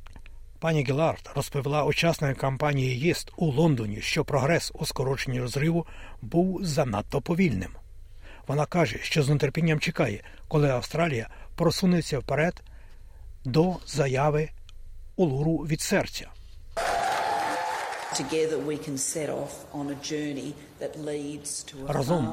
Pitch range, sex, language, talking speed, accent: 130-160 Hz, male, Ukrainian, 85 wpm, native